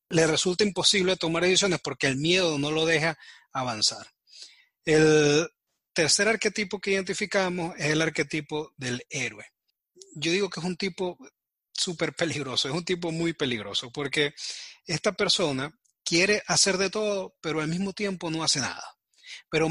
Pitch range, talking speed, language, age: 140-180 Hz, 150 wpm, Spanish, 30-49